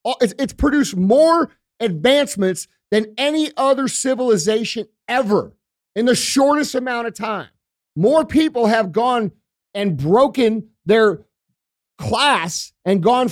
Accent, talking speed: American, 115 wpm